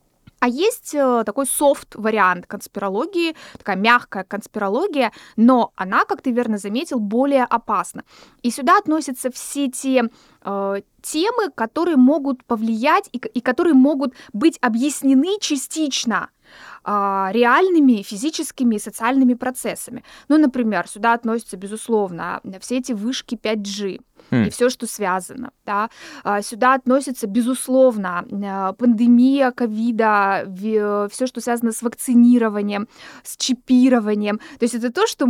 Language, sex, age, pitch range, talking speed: Russian, female, 20-39, 220-275 Hz, 120 wpm